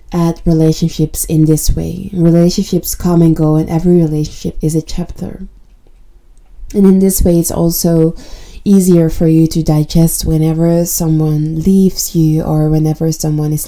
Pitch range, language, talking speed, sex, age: 155-170 Hz, English, 150 wpm, female, 20-39